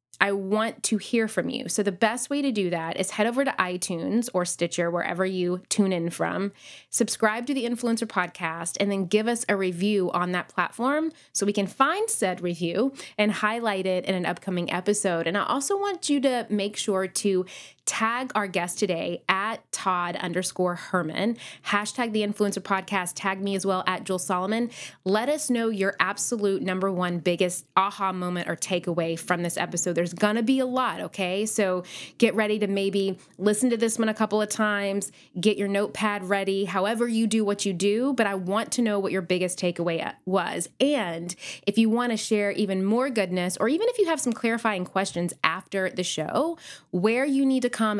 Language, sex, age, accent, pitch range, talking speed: English, female, 20-39, American, 185-225 Hz, 200 wpm